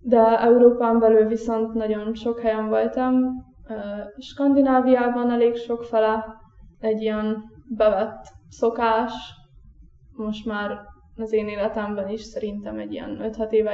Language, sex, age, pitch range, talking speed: Hungarian, female, 10-29, 210-235 Hz, 120 wpm